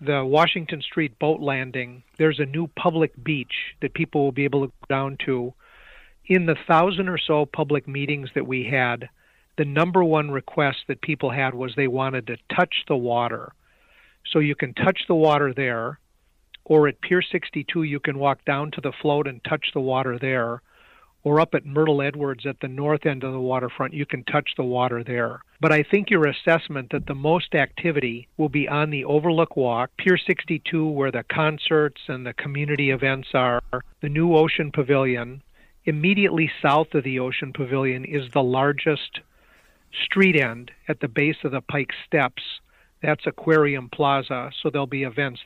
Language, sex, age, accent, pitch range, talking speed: English, male, 50-69, American, 135-155 Hz, 180 wpm